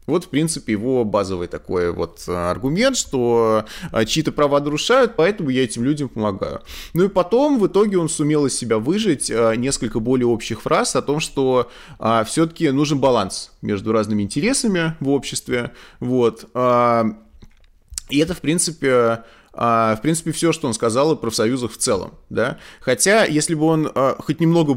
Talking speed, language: 155 wpm, Russian